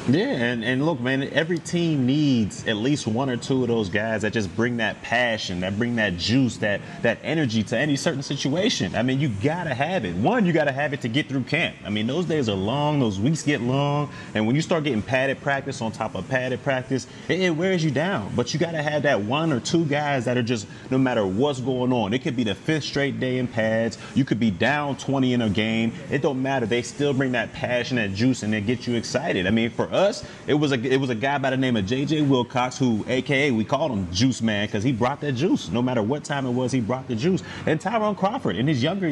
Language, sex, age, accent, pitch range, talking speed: English, male, 30-49, American, 115-145 Hz, 260 wpm